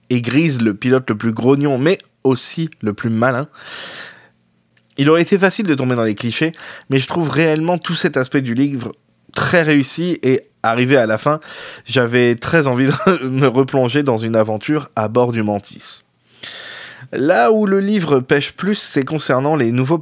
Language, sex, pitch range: French, male, 120-155 Hz